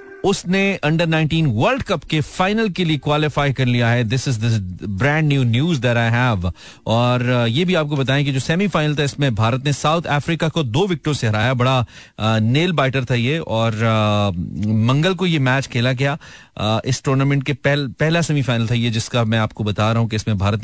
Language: Hindi